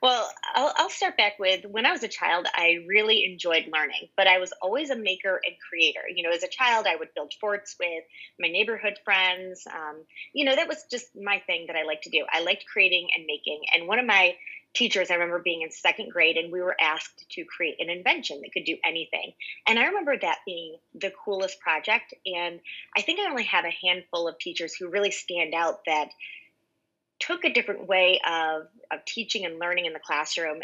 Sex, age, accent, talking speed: female, 30-49, American, 215 wpm